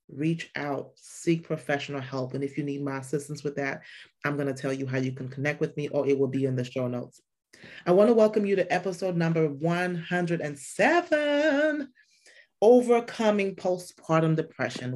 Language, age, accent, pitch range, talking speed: English, 30-49, American, 140-185 Hz, 175 wpm